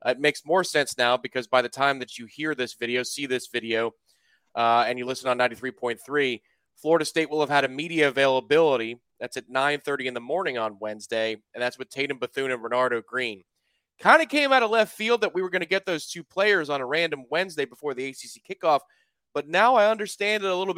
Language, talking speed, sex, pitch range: English, 225 wpm, male, 125-175 Hz